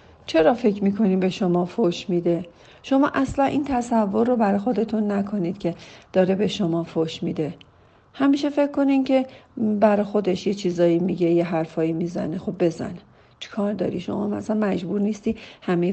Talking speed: 160 wpm